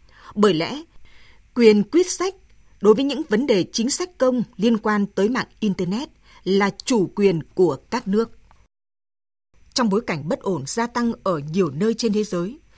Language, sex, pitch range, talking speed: Vietnamese, female, 190-245 Hz, 175 wpm